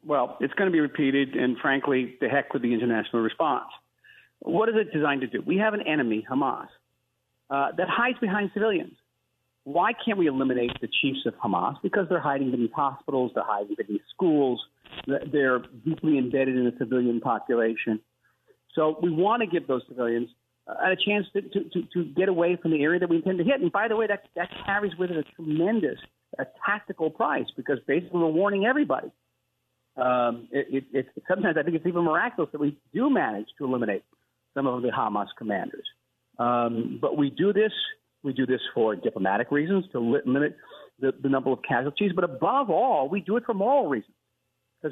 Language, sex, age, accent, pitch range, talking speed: English, male, 50-69, American, 130-190 Hz, 200 wpm